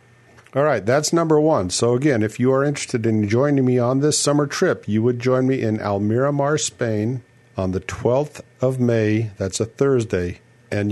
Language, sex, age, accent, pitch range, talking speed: English, male, 50-69, American, 105-130 Hz, 185 wpm